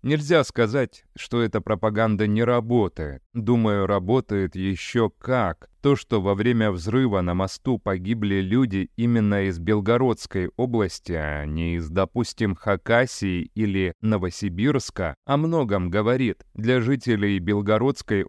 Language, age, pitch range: Russian, 30-49, 95-120 Hz